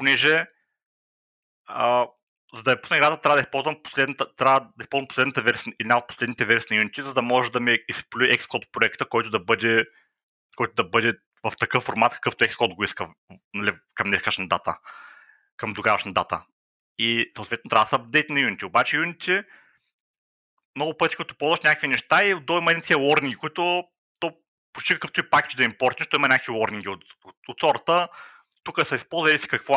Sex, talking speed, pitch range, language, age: male, 175 wpm, 120-160 Hz, Bulgarian, 30-49